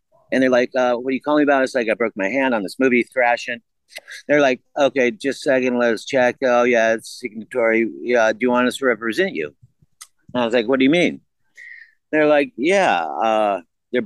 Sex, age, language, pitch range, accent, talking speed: male, 50-69, English, 115-140 Hz, American, 225 wpm